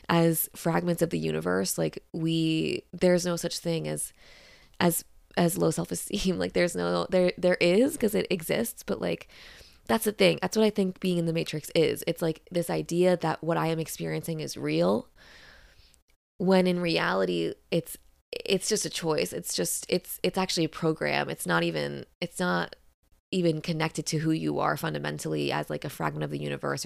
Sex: female